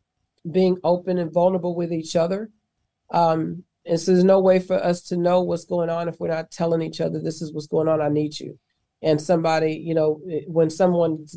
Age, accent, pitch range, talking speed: 40-59, American, 160-180 Hz, 210 wpm